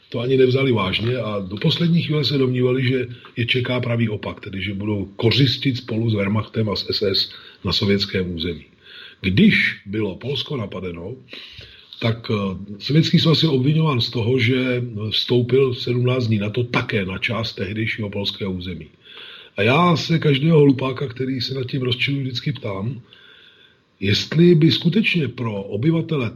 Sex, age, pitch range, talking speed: male, 40-59, 105-135 Hz, 155 wpm